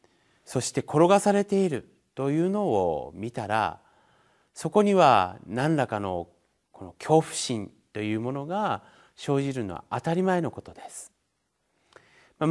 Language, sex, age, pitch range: Japanese, male, 30-49, 125-180 Hz